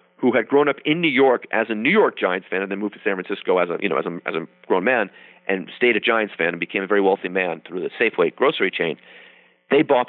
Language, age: English, 40-59